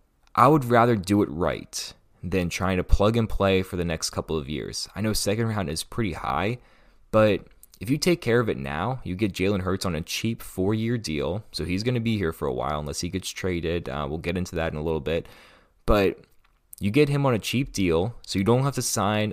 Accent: American